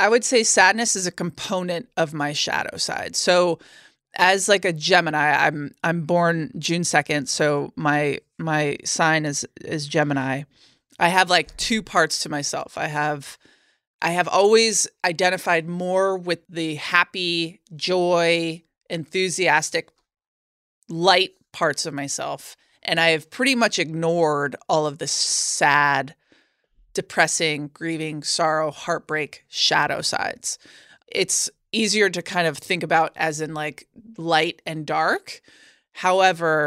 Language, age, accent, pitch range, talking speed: English, 20-39, American, 155-185 Hz, 135 wpm